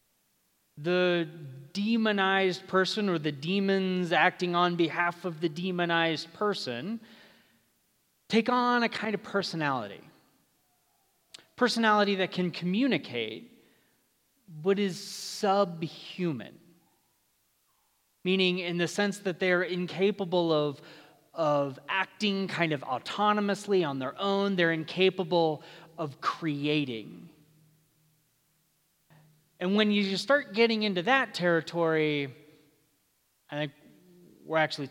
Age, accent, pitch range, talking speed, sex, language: 30-49, American, 155-200 Hz, 100 wpm, male, English